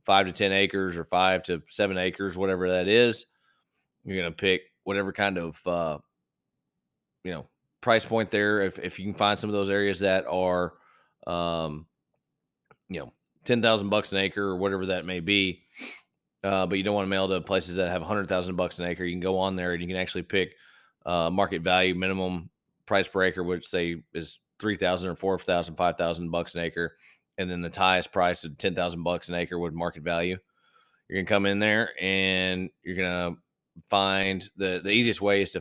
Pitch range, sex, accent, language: 90-100 Hz, male, American, English